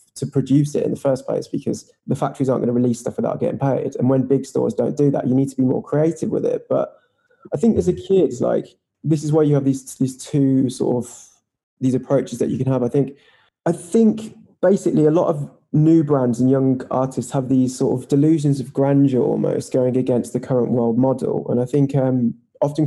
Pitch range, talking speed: 125-150 Hz, 230 wpm